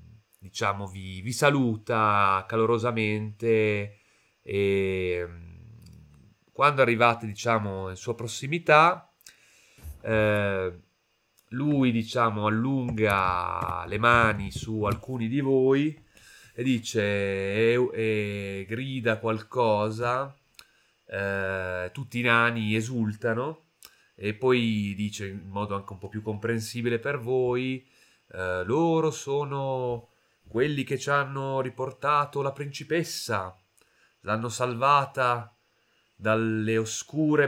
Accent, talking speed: native, 95 wpm